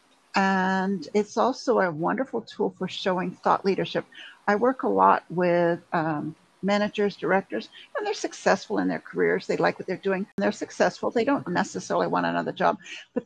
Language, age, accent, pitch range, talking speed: English, 60-79, American, 180-220 Hz, 175 wpm